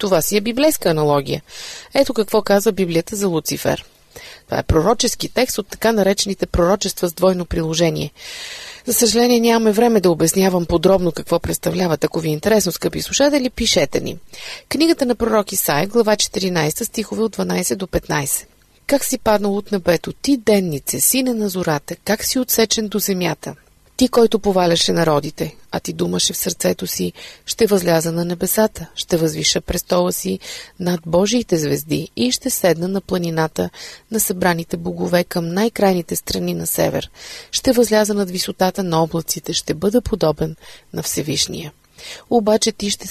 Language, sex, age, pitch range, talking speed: Bulgarian, female, 30-49, 170-225 Hz, 155 wpm